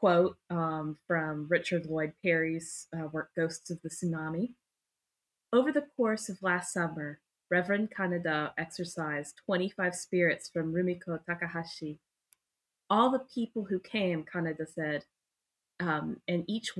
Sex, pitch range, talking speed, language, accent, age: female, 165-200 Hz, 130 wpm, English, American, 20-39